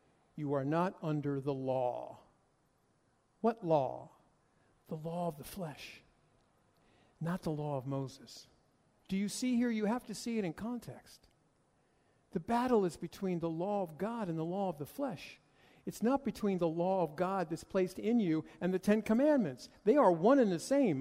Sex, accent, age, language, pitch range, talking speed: male, American, 50-69, English, 145-200 Hz, 185 wpm